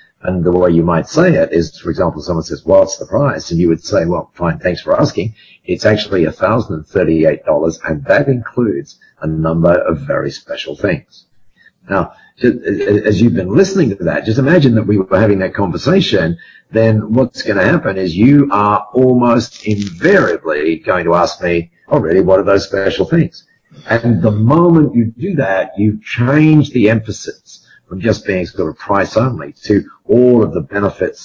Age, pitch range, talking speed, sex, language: 50-69, 90-135 Hz, 180 wpm, male, English